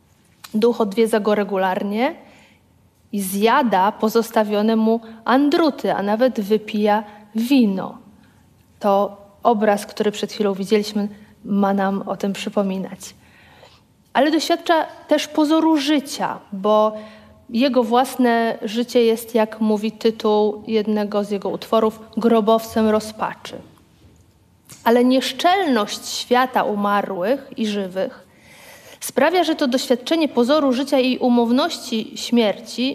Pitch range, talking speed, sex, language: 210-270 Hz, 105 wpm, female, Polish